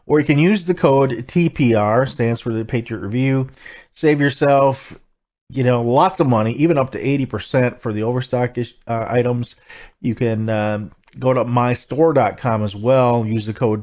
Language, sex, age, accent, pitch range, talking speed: English, male, 40-59, American, 110-130 Hz, 170 wpm